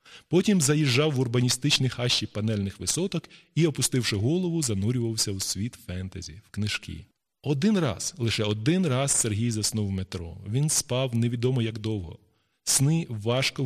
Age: 20-39